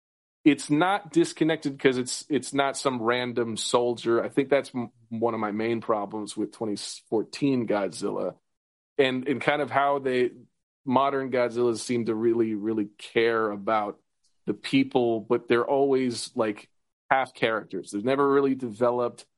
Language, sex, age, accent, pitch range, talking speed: English, male, 30-49, American, 120-155 Hz, 150 wpm